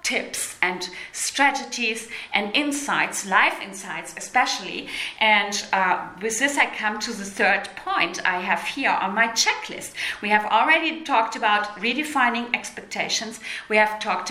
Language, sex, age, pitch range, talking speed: English, female, 30-49, 205-280 Hz, 145 wpm